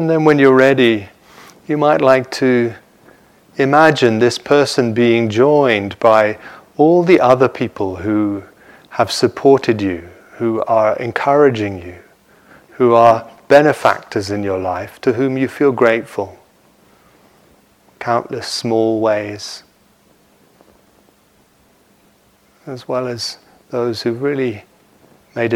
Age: 40-59